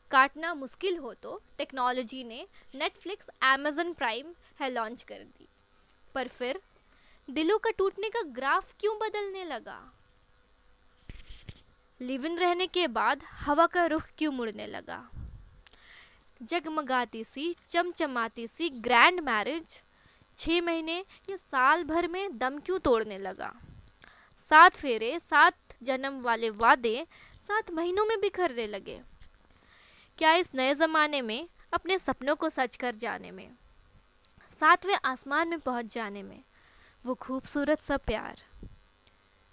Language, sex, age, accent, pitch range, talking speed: Hindi, female, 20-39, native, 245-345 Hz, 125 wpm